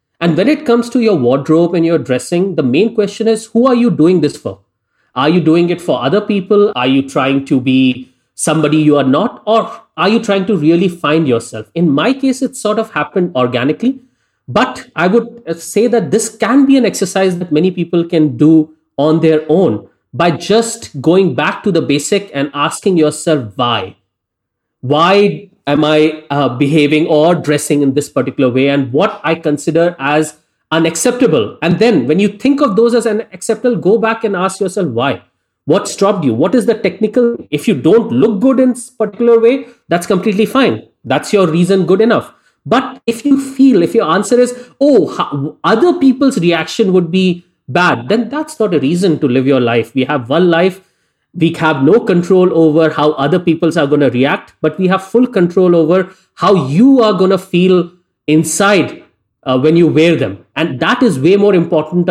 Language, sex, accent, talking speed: English, male, Indian, 195 wpm